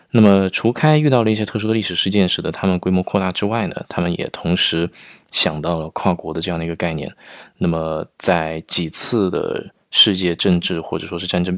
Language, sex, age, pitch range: Chinese, male, 20-39, 85-105 Hz